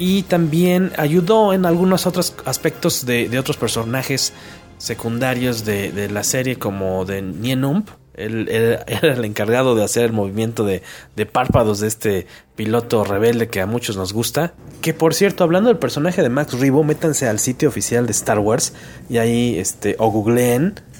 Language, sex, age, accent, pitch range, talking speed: English, male, 30-49, Mexican, 110-145 Hz, 175 wpm